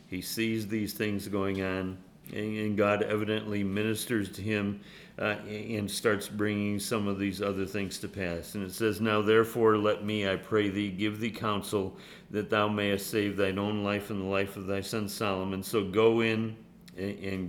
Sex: male